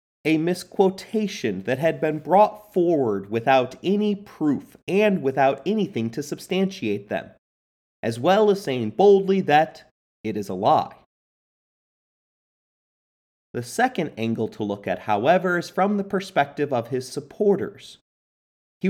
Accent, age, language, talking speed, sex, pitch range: American, 30-49, English, 130 wpm, male, 120-190 Hz